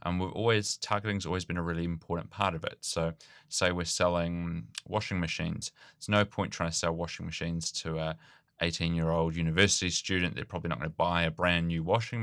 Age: 20-39